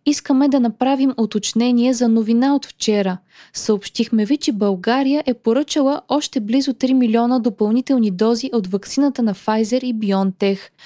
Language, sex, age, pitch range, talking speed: Bulgarian, female, 20-39, 215-270 Hz, 145 wpm